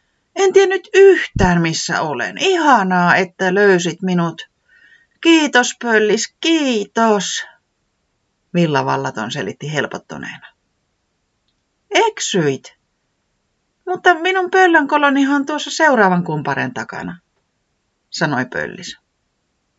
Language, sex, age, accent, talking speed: Finnish, female, 30-49, native, 85 wpm